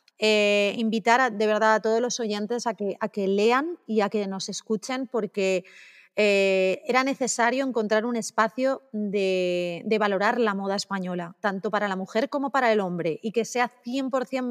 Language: Spanish